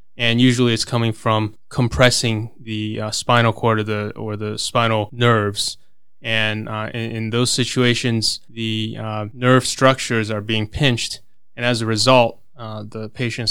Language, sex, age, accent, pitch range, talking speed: English, male, 20-39, American, 110-125 Hz, 155 wpm